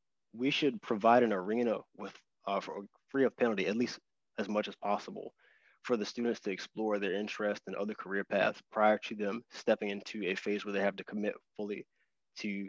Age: 20-39